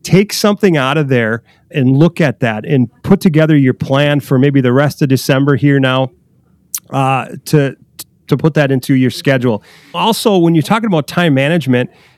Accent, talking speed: American, 180 wpm